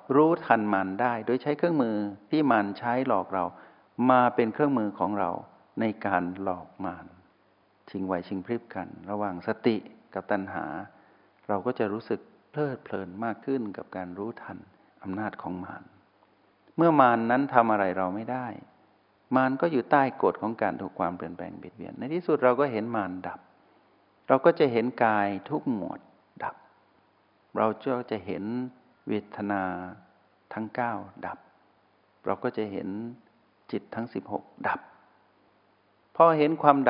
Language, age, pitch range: Thai, 60-79, 100-125 Hz